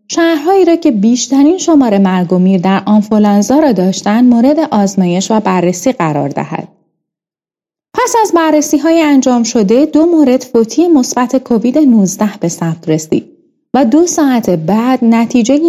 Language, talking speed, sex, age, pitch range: Persian, 140 wpm, female, 30-49, 200-290 Hz